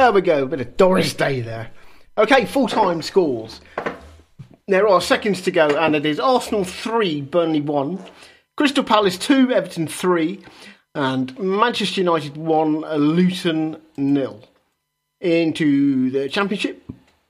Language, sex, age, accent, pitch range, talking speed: English, male, 40-59, British, 145-205 Hz, 130 wpm